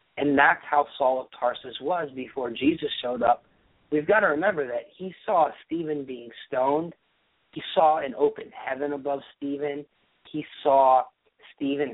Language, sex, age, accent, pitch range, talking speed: English, male, 40-59, American, 125-145 Hz, 155 wpm